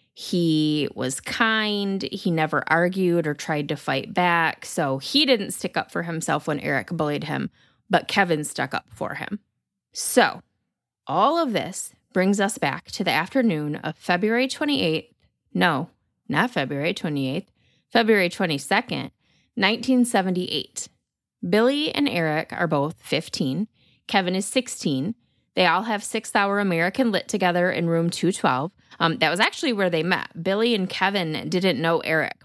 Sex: female